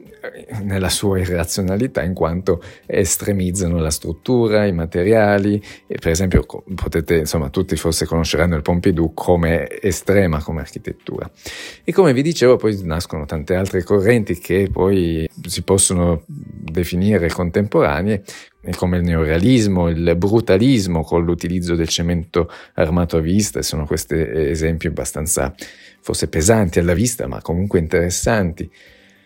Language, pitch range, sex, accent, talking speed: Italian, 80-100 Hz, male, native, 130 wpm